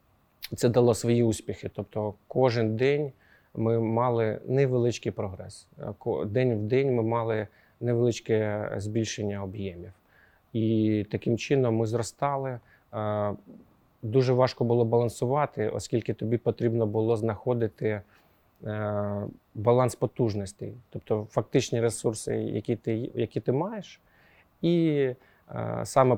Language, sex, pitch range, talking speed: Ukrainian, male, 105-120 Hz, 105 wpm